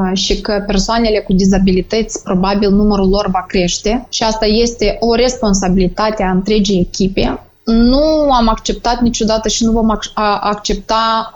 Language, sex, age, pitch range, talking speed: Romanian, female, 20-39, 205-260 Hz, 135 wpm